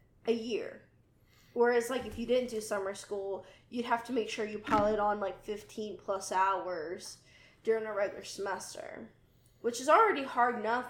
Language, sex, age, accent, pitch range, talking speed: English, female, 10-29, American, 215-270 Hz, 170 wpm